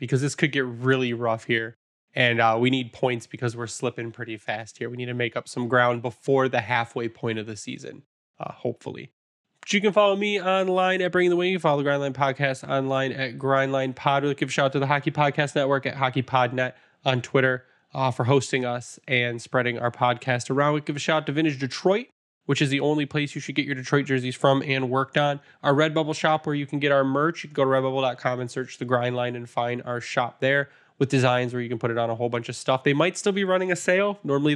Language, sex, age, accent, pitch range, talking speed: English, male, 10-29, American, 125-155 Hz, 250 wpm